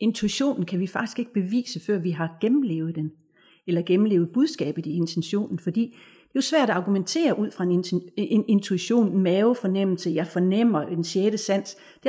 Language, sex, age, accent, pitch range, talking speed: Danish, female, 40-59, native, 185-245 Hz, 170 wpm